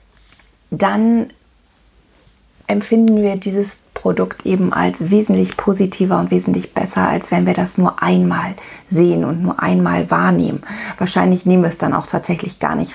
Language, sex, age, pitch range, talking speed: German, female, 40-59, 175-210 Hz, 150 wpm